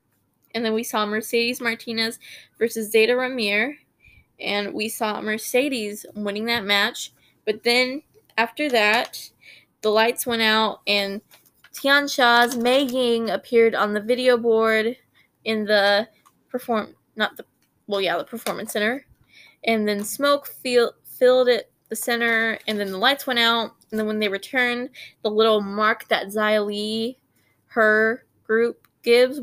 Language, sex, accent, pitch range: English, female, American, 210-245 Hz